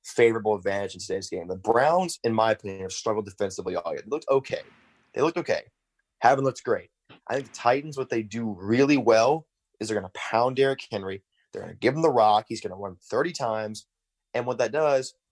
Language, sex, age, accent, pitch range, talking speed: English, male, 20-39, American, 105-130 Hz, 220 wpm